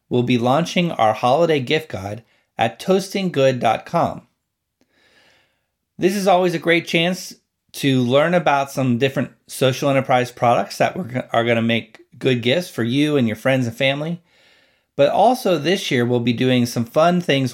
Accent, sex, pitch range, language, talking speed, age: American, male, 120-170 Hz, English, 160 wpm, 40-59